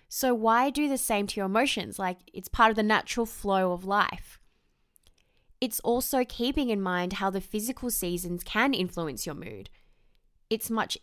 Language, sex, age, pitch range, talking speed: English, female, 20-39, 190-230 Hz, 175 wpm